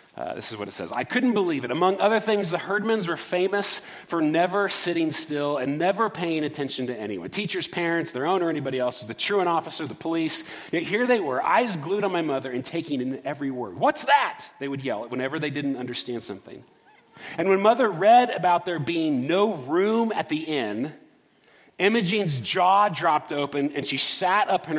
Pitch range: 155-205 Hz